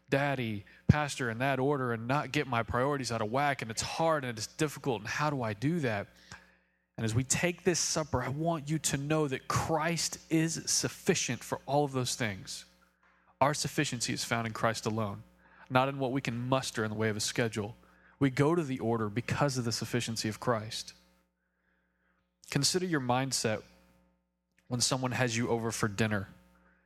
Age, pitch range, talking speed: 20-39, 110-140 Hz, 190 wpm